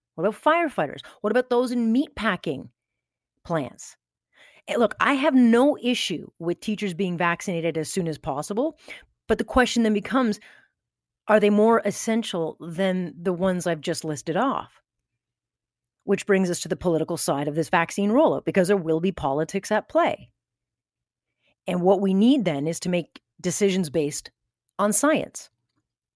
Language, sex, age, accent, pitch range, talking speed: English, female, 40-59, American, 165-215 Hz, 155 wpm